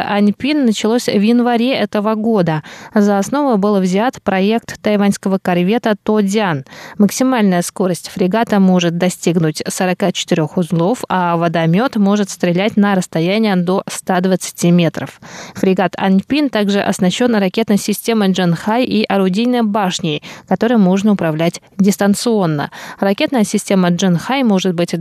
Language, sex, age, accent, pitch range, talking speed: Russian, female, 20-39, native, 185-230 Hz, 120 wpm